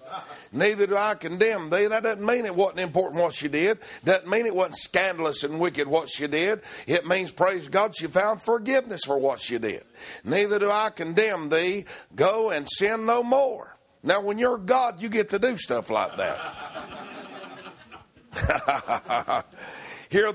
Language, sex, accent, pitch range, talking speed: English, male, American, 155-215 Hz, 170 wpm